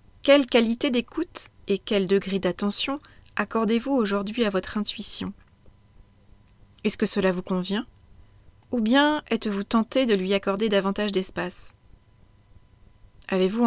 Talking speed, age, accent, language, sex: 120 wpm, 30-49, French, French, female